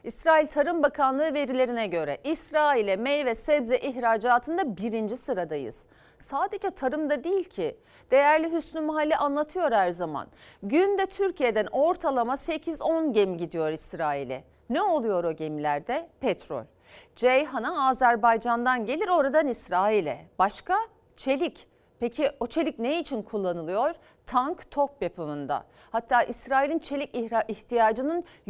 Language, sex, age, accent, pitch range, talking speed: Turkish, female, 40-59, native, 230-315 Hz, 110 wpm